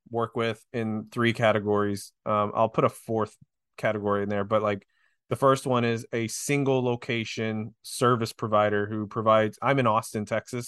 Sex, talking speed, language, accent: male, 170 wpm, English, American